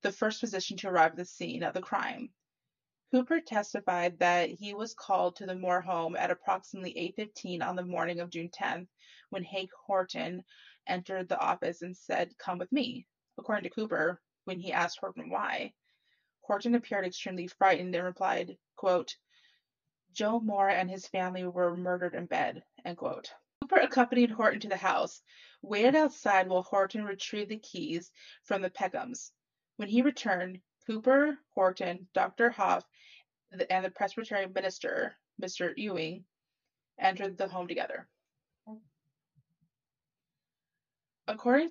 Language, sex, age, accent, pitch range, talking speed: English, female, 20-39, American, 180-215 Hz, 145 wpm